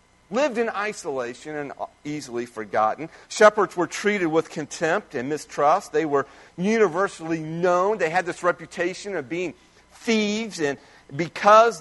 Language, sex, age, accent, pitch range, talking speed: English, male, 40-59, American, 150-205 Hz, 130 wpm